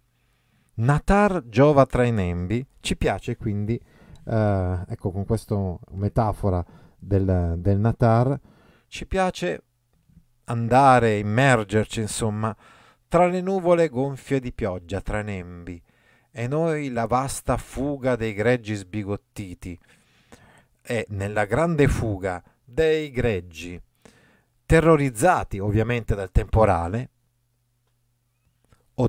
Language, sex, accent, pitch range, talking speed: Italian, male, native, 105-135 Hz, 100 wpm